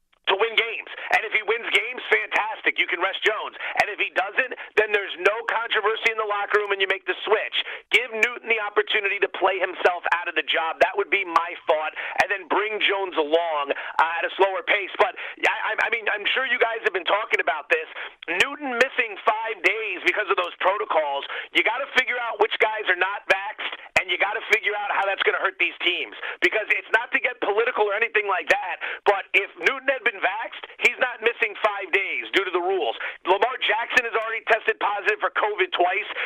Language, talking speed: English, 220 wpm